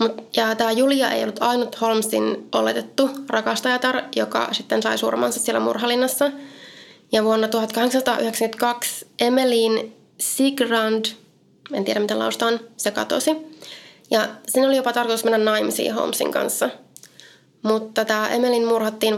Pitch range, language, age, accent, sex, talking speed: 215-260 Hz, Finnish, 20-39, native, female, 125 wpm